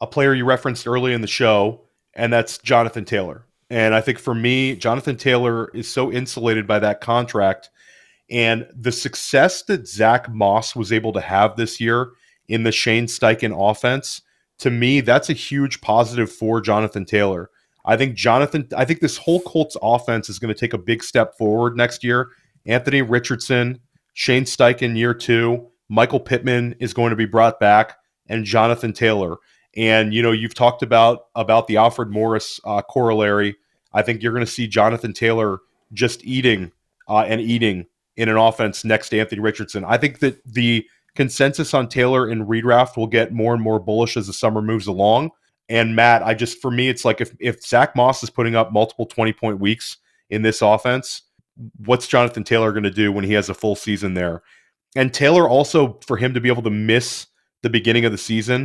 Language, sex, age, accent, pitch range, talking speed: English, male, 30-49, American, 110-125 Hz, 190 wpm